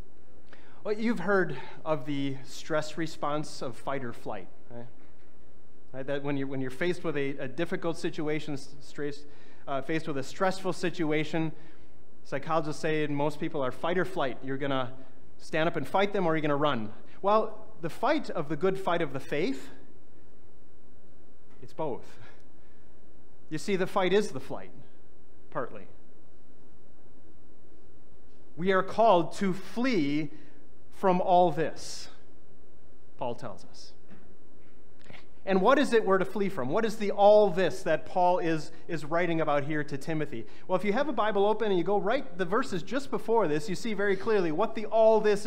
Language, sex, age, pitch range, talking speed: English, male, 30-49, 145-195 Hz, 165 wpm